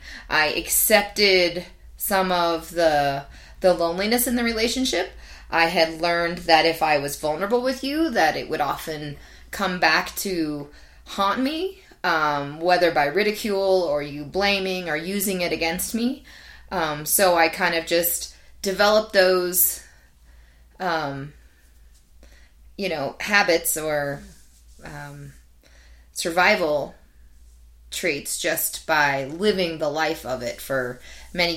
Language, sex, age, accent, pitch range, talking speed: English, female, 20-39, American, 140-185 Hz, 125 wpm